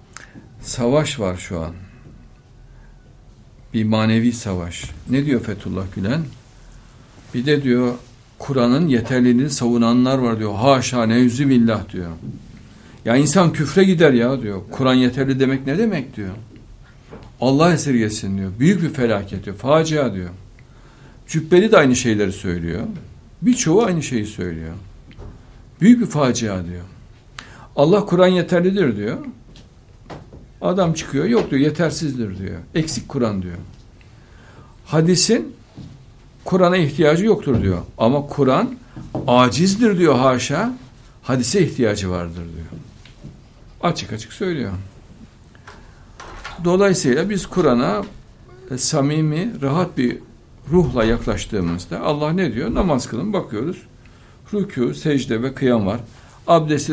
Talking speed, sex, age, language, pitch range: 110 wpm, male, 60-79, Turkish, 110-145 Hz